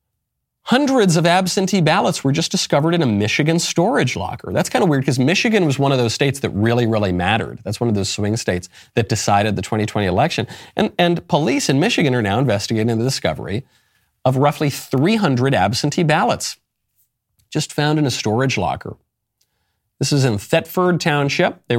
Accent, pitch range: American, 105-145 Hz